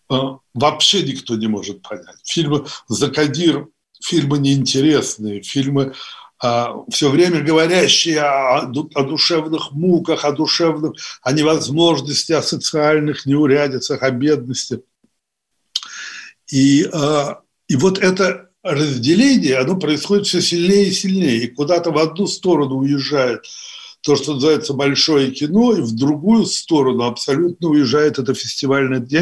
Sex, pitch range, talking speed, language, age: male, 135-170 Hz, 120 wpm, Russian, 60-79